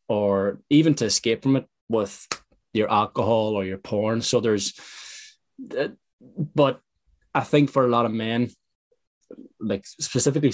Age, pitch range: 20-39, 105-130 Hz